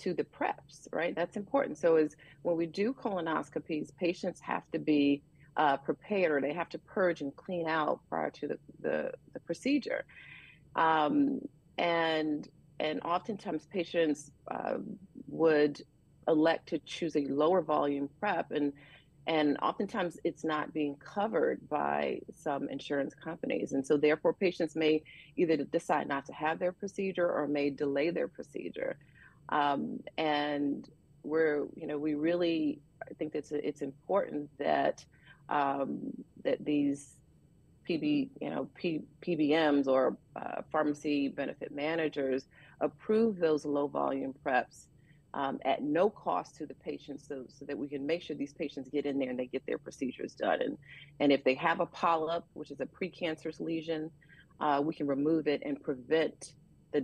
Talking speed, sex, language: 160 wpm, female, English